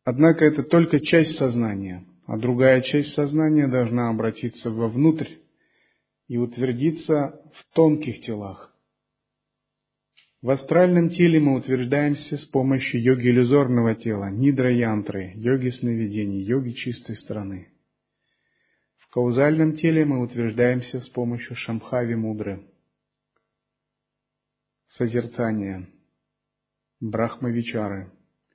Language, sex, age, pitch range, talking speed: Russian, male, 40-59, 115-140 Hz, 95 wpm